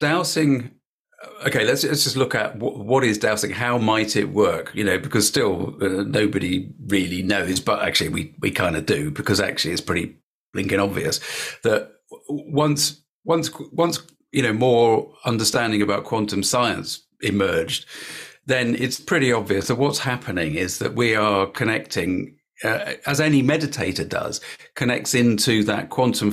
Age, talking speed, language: 40-59, 155 wpm, English